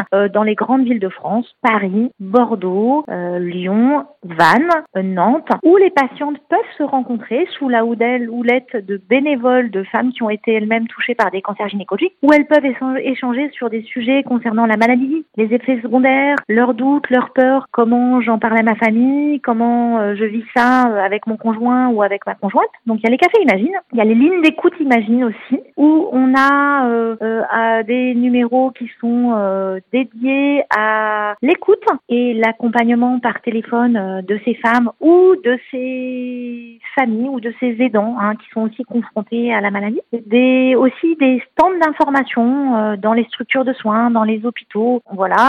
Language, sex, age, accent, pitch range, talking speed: French, female, 40-59, French, 225-275 Hz, 185 wpm